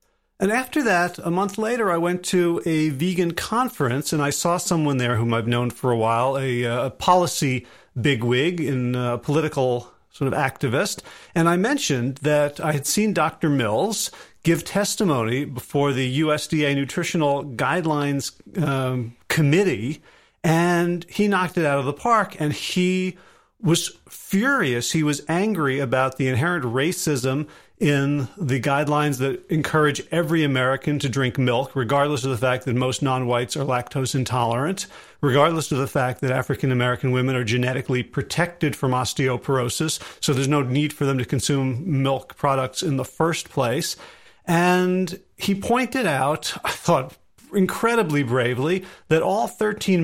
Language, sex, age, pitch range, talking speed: English, male, 40-59, 130-175 Hz, 150 wpm